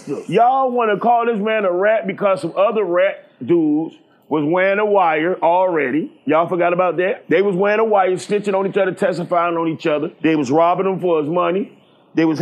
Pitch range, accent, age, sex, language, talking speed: 175-220 Hz, American, 30-49, male, English, 215 wpm